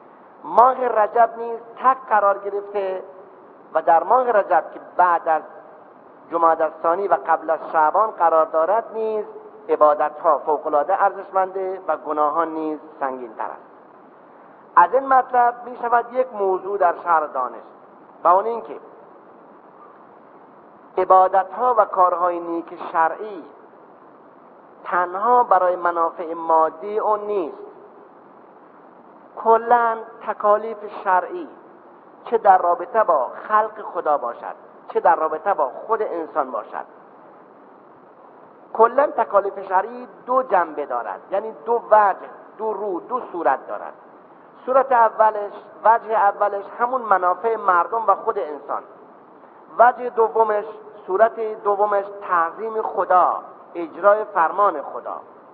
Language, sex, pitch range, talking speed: Persian, male, 170-225 Hz, 110 wpm